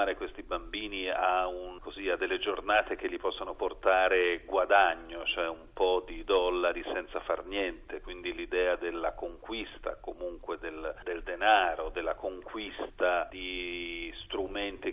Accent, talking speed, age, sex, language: native, 135 wpm, 40-59, male, Italian